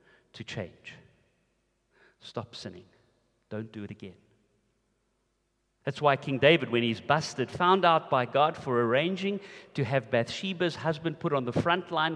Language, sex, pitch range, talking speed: English, male, 120-155 Hz, 150 wpm